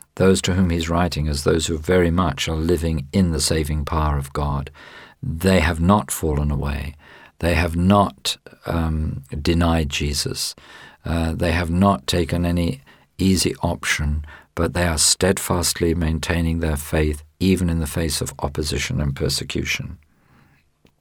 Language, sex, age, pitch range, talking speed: English, male, 50-69, 75-95 Hz, 150 wpm